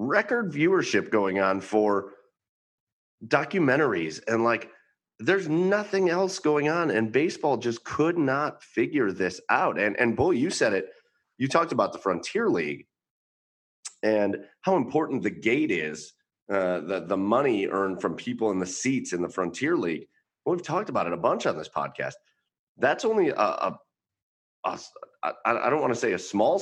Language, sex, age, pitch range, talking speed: English, male, 30-49, 95-150 Hz, 175 wpm